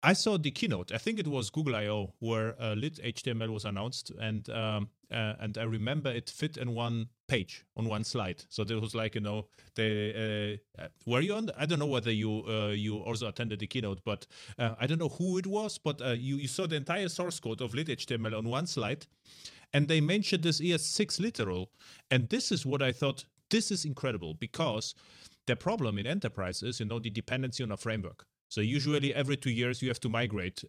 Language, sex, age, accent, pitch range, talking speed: English, male, 30-49, German, 110-135 Hz, 220 wpm